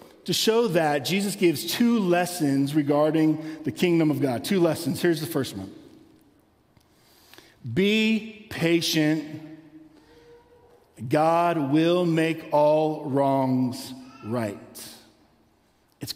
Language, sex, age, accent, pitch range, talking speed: English, male, 50-69, American, 140-175 Hz, 100 wpm